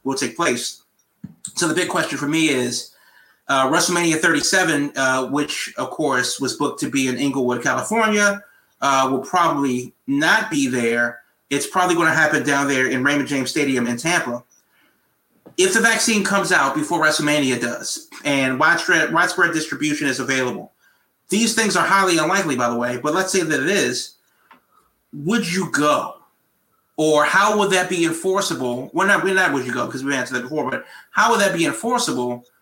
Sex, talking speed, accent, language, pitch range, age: male, 180 wpm, American, English, 130-185 Hz, 30-49